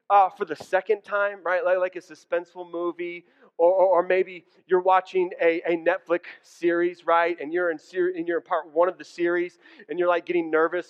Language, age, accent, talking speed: English, 30-49, American, 215 wpm